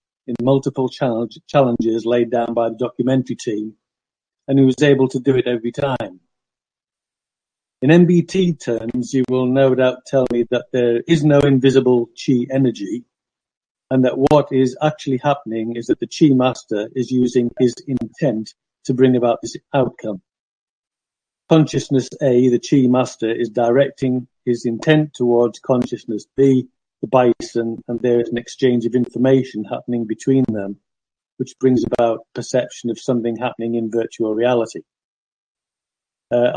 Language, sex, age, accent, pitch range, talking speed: English, male, 50-69, British, 120-135 Hz, 145 wpm